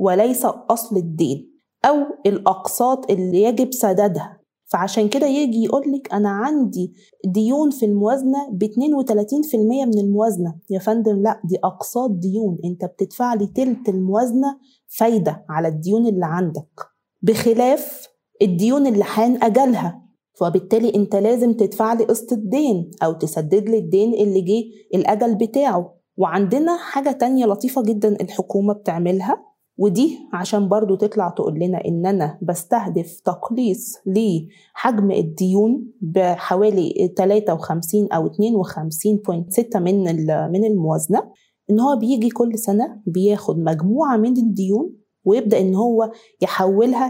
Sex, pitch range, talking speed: female, 190-235 Hz, 120 wpm